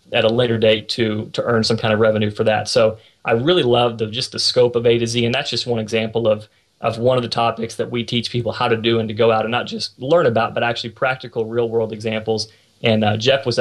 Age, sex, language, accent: 30-49, male, English, American